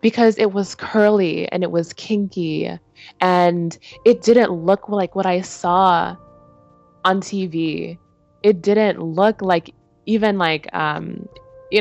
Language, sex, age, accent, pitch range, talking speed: English, female, 20-39, American, 155-200 Hz, 130 wpm